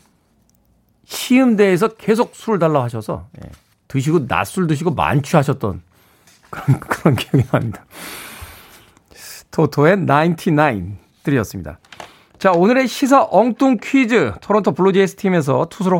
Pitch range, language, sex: 135-200 Hz, Korean, male